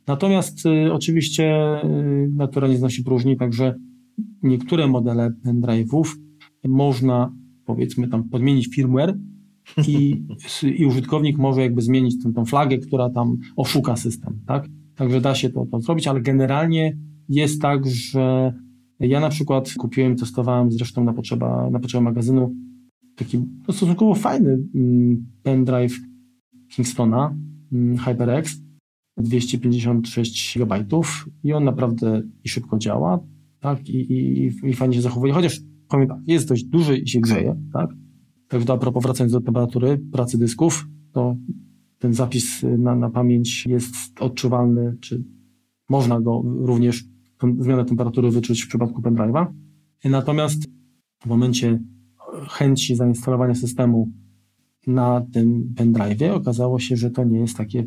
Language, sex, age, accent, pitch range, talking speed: Polish, male, 40-59, native, 120-145 Hz, 125 wpm